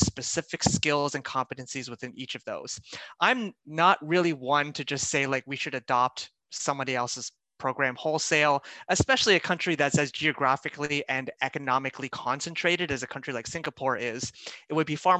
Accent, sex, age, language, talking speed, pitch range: American, male, 30-49, English, 165 wpm, 135-175 Hz